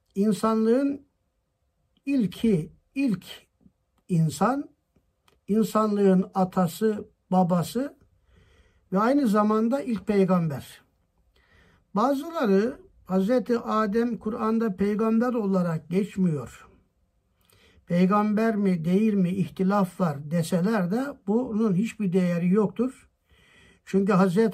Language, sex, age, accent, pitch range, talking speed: Turkish, male, 60-79, native, 175-220 Hz, 80 wpm